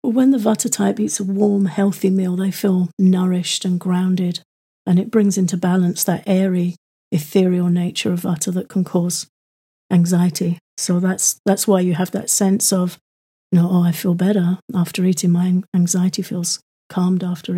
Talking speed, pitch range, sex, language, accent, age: 175 wpm, 180-200 Hz, female, English, British, 40-59